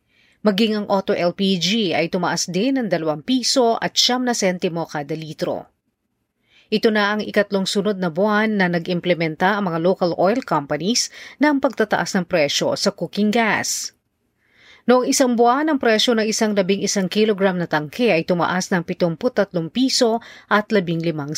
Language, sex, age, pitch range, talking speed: Filipino, female, 40-59, 175-225 Hz, 160 wpm